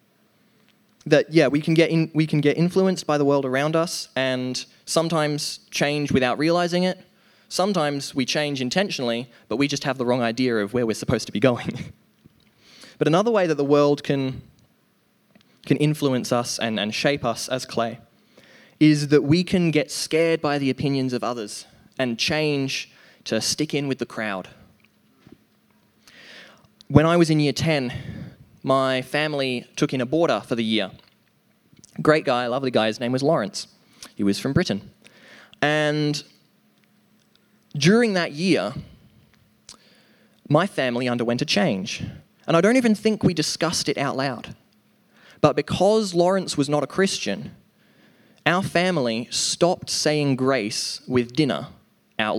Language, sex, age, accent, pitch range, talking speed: English, male, 20-39, Australian, 130-170 Hz, 155 wpm